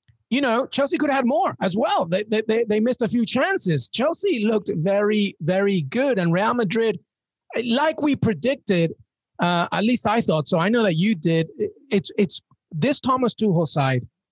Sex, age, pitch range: male, 30-49, 160-215 Hz